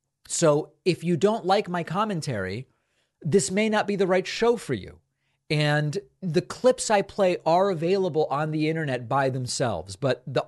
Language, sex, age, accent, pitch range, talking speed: English, male, 40-59, American, 125-170 Hz, 170 wpm